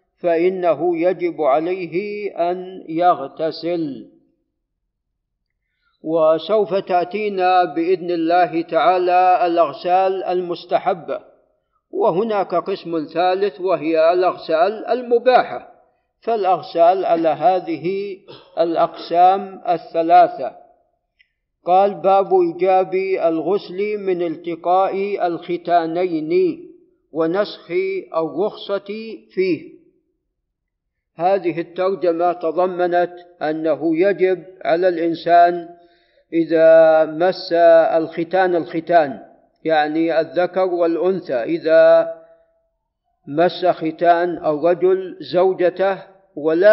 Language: Arabic